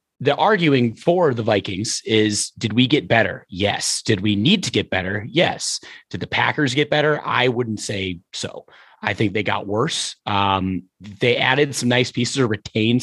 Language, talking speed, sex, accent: English, 185 wpm, male, American